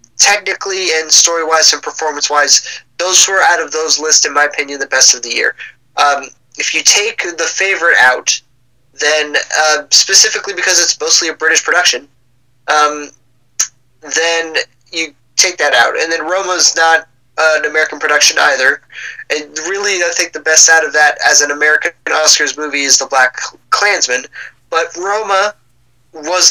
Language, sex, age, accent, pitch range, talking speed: English, male, 20-39, American, 150-185 Hz, 160 wpm